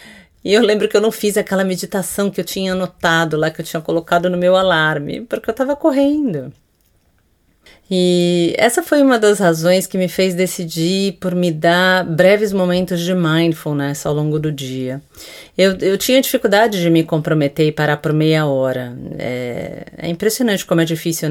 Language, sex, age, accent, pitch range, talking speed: English, female, 40-59, Brazilian, 150-185 Hz, 180 wpm